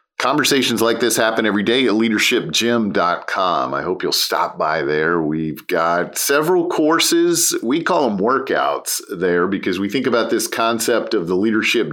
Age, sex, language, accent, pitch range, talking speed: 50-69, male, English, American, 105-140 Hz, 160 wpm